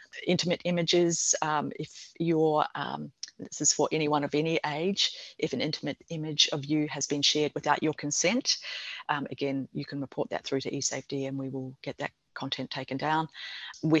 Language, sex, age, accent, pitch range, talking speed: English, female, 30-49, Australian, 140-160 Hz, 185 wpm